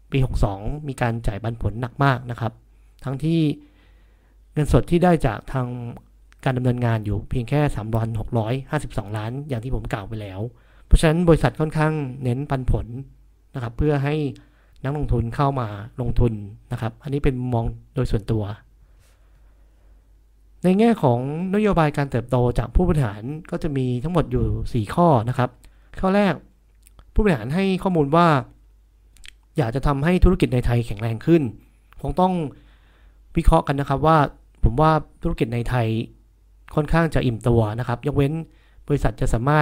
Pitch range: 115-150 Hz